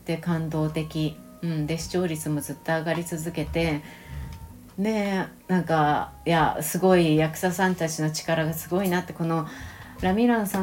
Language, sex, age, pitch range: Japanese, female, 30-49, 155-200 Hz